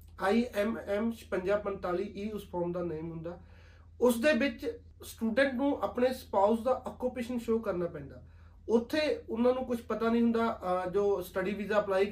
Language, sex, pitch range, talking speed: Punjabi, male, 180-225 Hz, 155 wpm